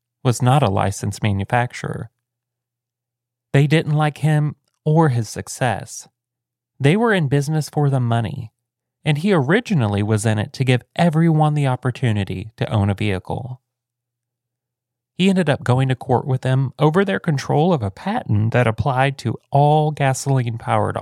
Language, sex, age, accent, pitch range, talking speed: English, male, 30-49, American, 120-150 Hz, 150 wpm